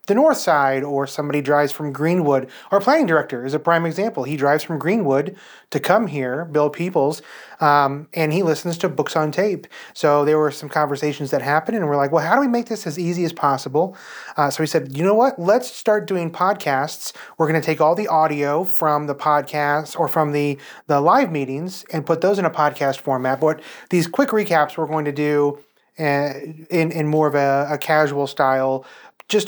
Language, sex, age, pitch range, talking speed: English, male, 30-49, 145-185 Hz, 210 wpm